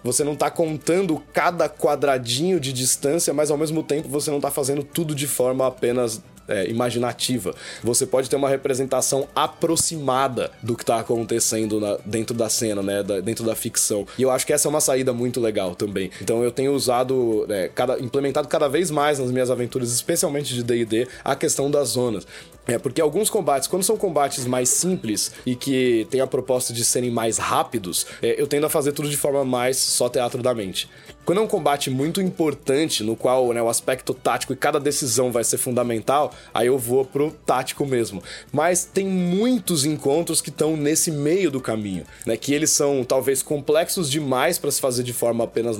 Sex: male